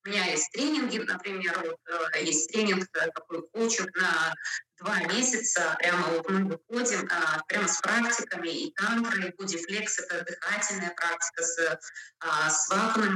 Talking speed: 140 wpm